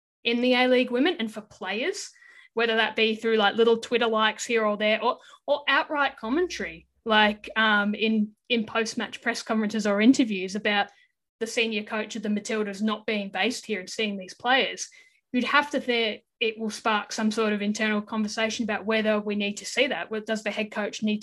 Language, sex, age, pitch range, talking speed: English, female, 10-29, 205-235 Hz, 200 wpm